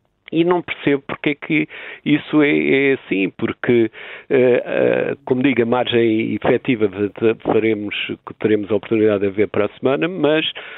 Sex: male